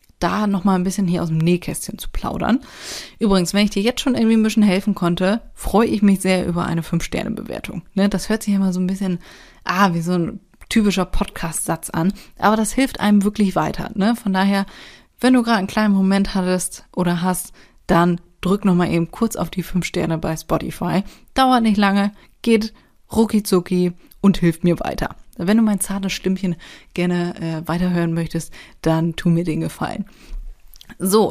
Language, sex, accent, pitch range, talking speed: German, female, German, 175-215 Hz, 180 wpm